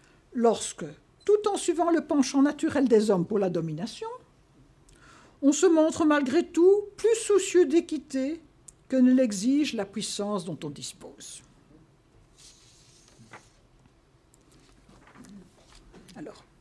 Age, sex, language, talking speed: 60-79, female, French, 105 wpm